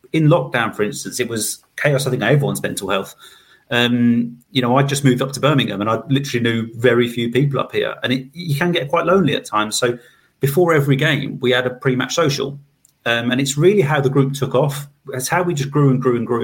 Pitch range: 125-150 Hz